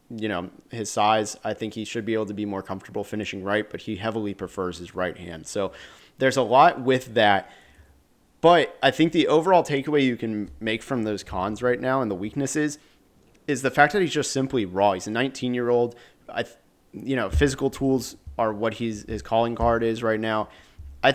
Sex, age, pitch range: male, 30-49, 105-125 Hz